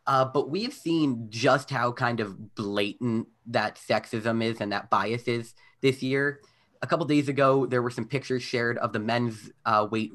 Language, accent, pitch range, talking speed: English, American, 110-130 Hz, 200 wpm